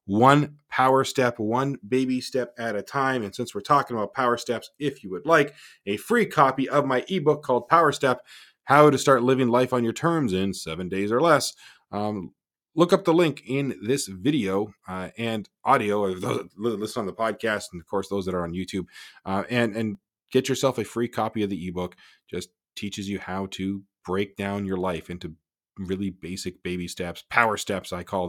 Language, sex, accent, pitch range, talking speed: English, male, American, 95-130 Hz, 205 wpm